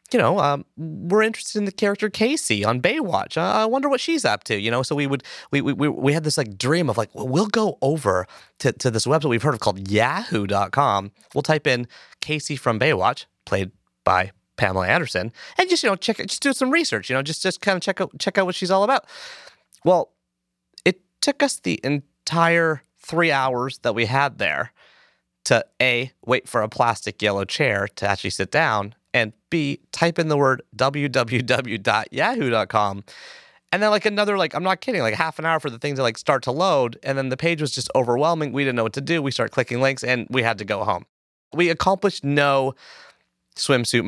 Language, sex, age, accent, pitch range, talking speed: English, male, 30-49, American, 110-165 Hz, 215 wpm